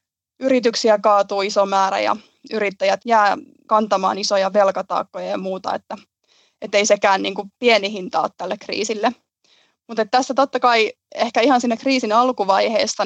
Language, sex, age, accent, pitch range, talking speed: Finnish, female, 20-39, native, 200-225 Hz, 145 wpm